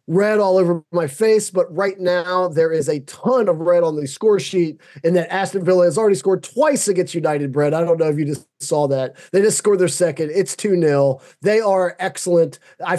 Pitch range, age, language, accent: 140-180 Hz, 20-39, English, American